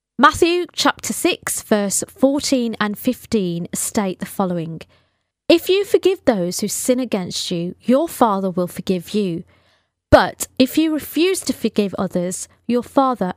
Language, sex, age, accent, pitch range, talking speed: English, female, 30-49, British, 190-255 Hz, 145 wpm